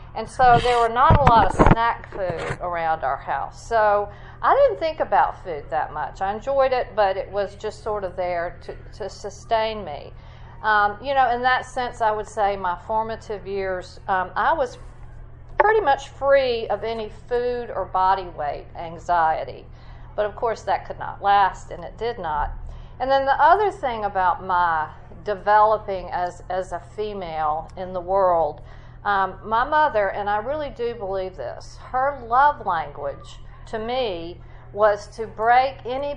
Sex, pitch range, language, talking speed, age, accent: female, 180-230 Hz, English, 175 wpm, 50-69, American